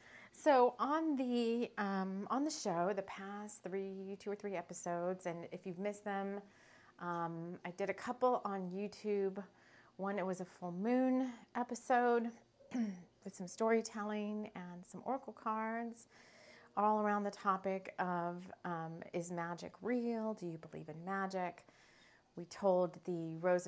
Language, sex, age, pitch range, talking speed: English, female, 30-49, 170-215 Hz, 145 wpm